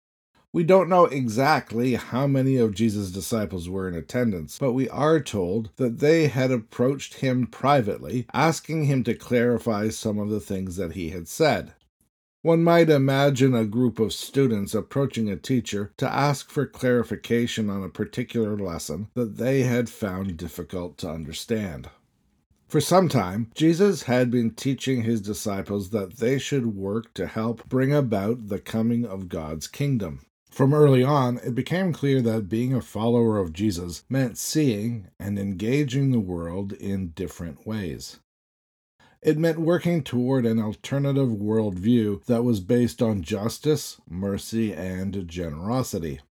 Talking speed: 150 wpm